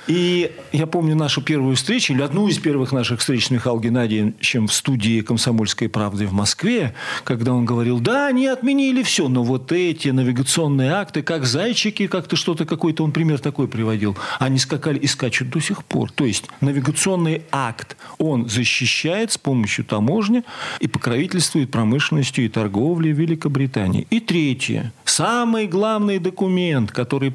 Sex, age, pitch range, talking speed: male, 40-59, 125-175 Hz, 155 wpm